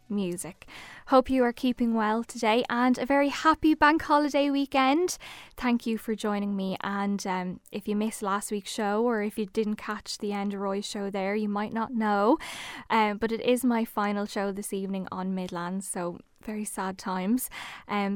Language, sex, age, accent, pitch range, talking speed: English, female, 10-29, Irish, 200-245 Hz, 185 wpm